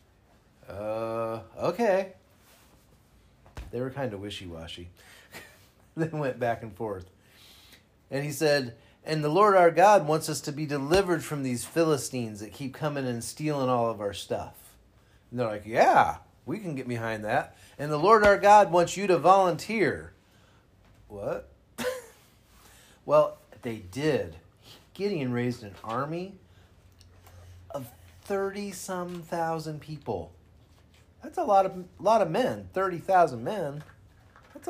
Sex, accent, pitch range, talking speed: male, American, 100-150 Hz, 135 wpm